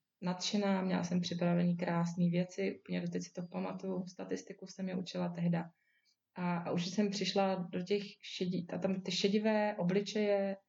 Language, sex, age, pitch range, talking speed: Czech, female, 20-39, 175-190 Hz, 170 wpm